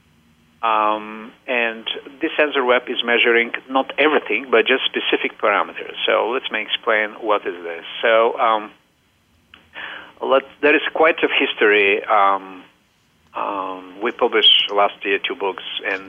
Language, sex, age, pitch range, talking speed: English, male, 50-69, 100-135 Hz, 140 wpm